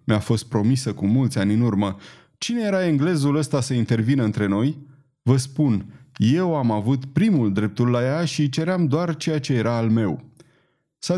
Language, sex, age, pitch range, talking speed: Romanian, male, 20-39, 115-155 Hz, 180 wpm